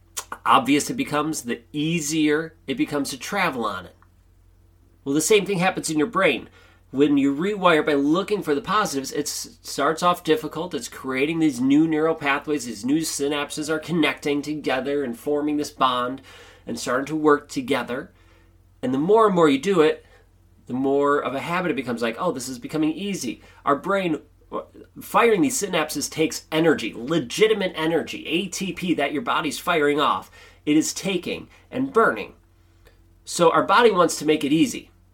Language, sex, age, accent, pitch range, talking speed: English, male, 30-49, American, 125-160 Hz, 170 wpm